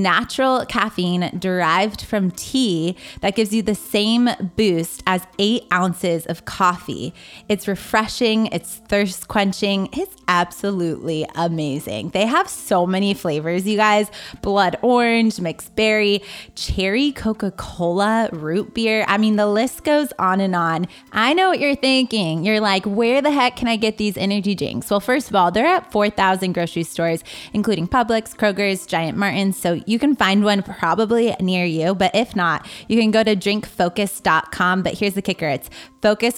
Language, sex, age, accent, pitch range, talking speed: English, female, 20-39, American, 180-215 Hz, 165 wpm